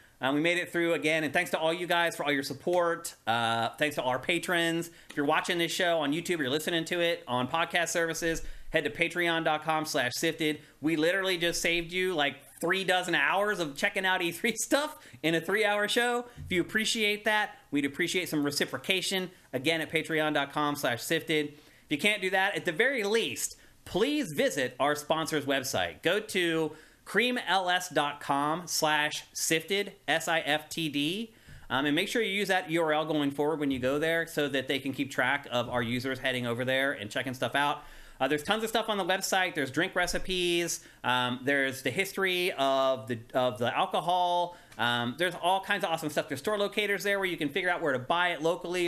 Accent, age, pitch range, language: American, 30-49, 140-180 Hz, English